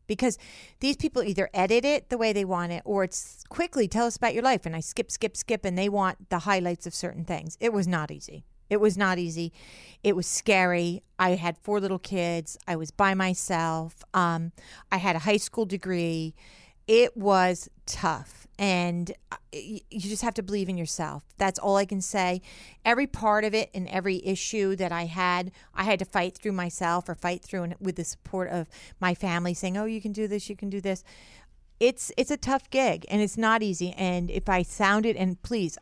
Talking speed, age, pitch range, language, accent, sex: 210 wpm, 40-59, 175-210 Hz, English, American, female